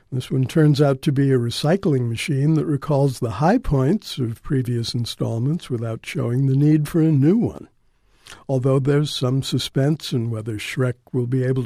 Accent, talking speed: American, 180 wpm